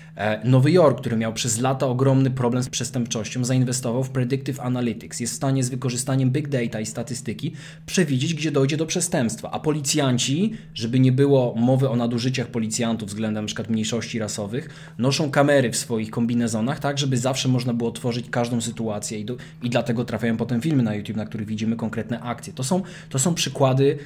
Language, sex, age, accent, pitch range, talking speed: Polish, male, 20-39, native, 120-140 Hz, 180 wpm